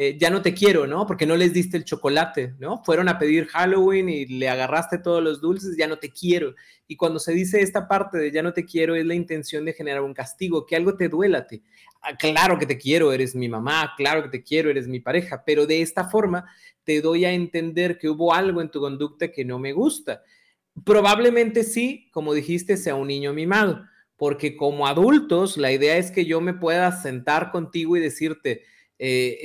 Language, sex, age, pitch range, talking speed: Spanish, male, 30-49, 150-185 Hz, 215 wpm